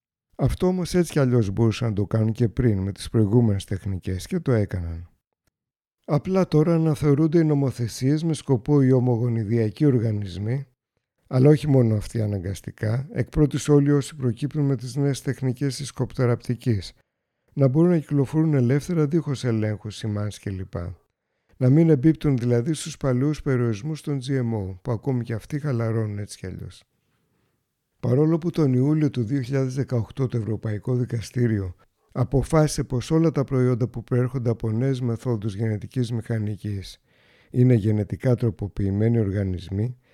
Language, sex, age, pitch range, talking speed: Greek, male, 60-79, 110-145 Hz, 140 wpm